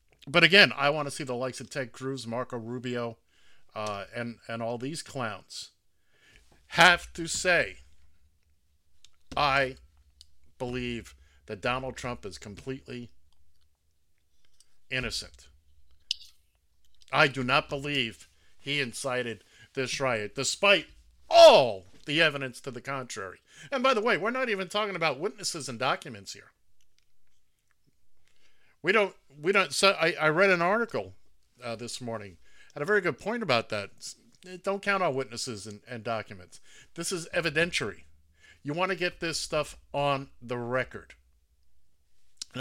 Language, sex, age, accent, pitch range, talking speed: English, male, 50-69, American, 100-155 Hz, 140 wpm